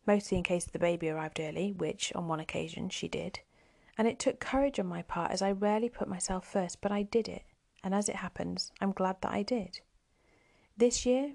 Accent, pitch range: British, 185-215 Hz